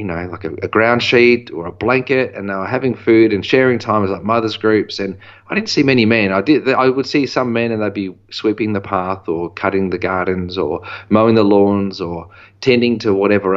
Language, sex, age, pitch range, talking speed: English, male, 30-49, 95-110 Hz, 235 wpm